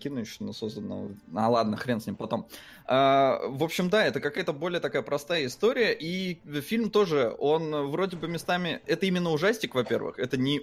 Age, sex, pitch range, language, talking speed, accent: 20-39, male, 130-170 Hz, Russian, 180 wpm, native